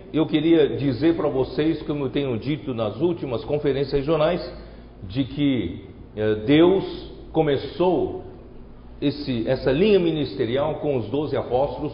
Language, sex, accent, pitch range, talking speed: Portuguese, male, Brazilian, 130-170 Hz, 120 wpm